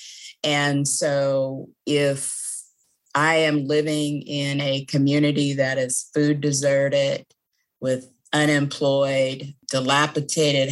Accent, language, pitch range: American, English, 130-145 Hz